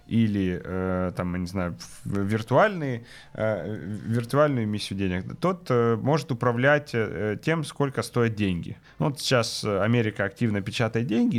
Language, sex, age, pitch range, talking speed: Ukrainian, male, 30-49, 100-130 Hz, 105 wpm